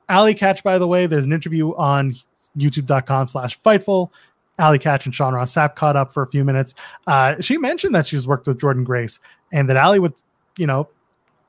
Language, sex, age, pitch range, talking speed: English, male, 20-39, 140-180 Hz, 195 wpm